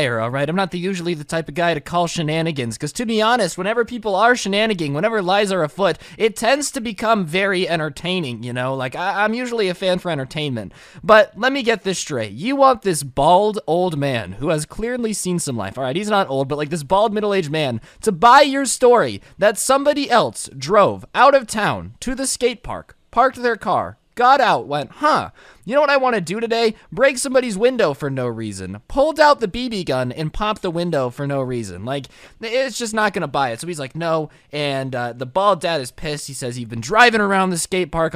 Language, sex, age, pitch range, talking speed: English, male, 20-39, 150-220 Hz, 225 wpm